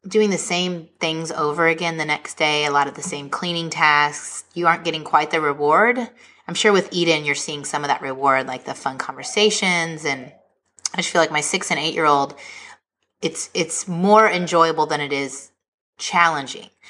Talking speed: 190 wpm